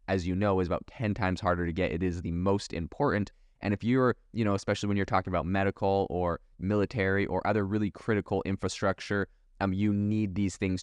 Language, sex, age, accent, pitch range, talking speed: English, male, 20-39, American, 85-100 Hz, 210 wpm